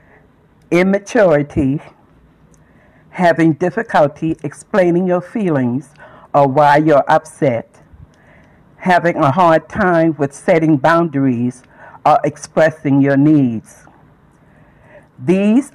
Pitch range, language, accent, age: 140-175 Hz, English, American, 60-79